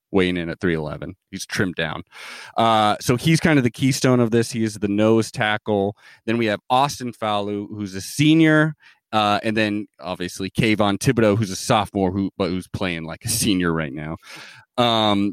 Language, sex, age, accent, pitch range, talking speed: English, male, 30-49, American, 100-130 Hz, 190 wpm